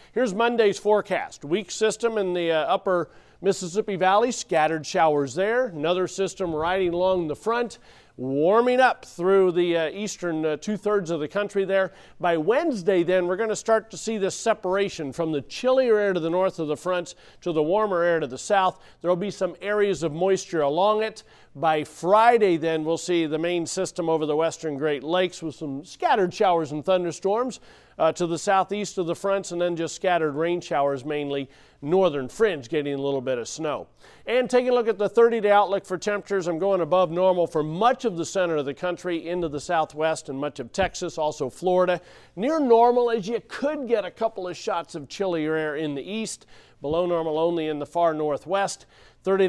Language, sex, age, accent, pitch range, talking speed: English, male, 40-59, American, 160-205 Hz, 200 wpm